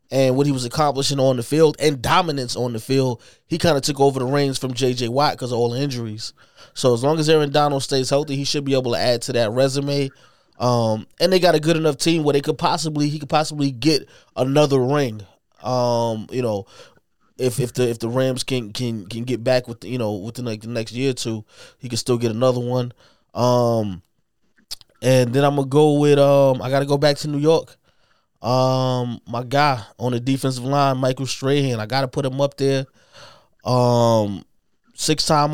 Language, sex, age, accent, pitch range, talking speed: English, male, 20-39, American, 125-150 Hz, 215 wpm